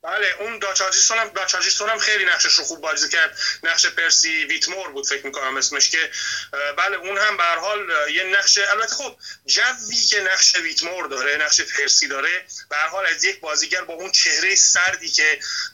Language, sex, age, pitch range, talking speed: Persian, male, 30-49, 165-225 Hz, 180 wpm